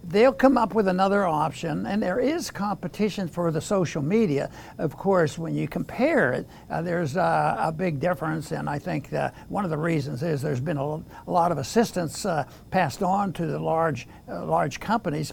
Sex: male